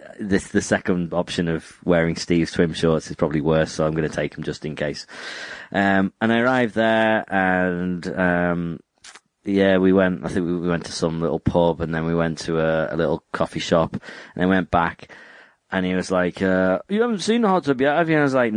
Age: 30-49